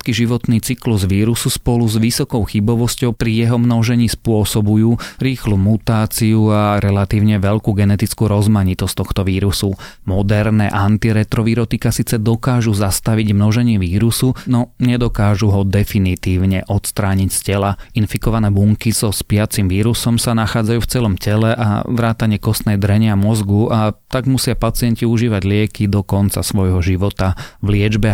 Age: 30-49